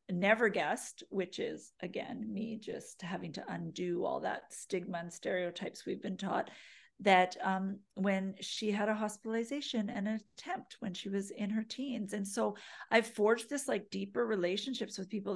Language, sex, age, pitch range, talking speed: English, female, 40-59, 185-225 Hz, 170 wpm